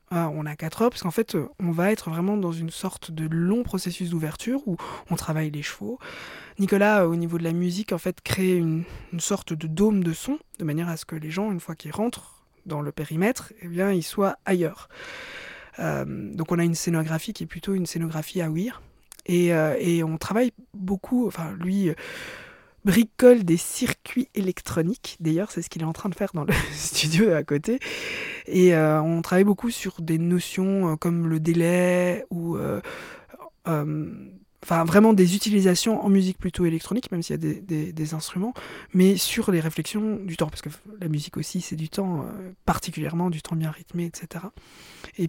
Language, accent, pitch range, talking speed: French, French, 165-205 Hz, 195 wpm